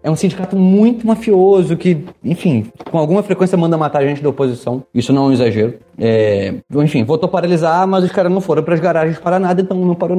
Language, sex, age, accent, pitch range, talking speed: Portuguese, male, 30-49, Brazilian, 130-180 Hz, 225 wpm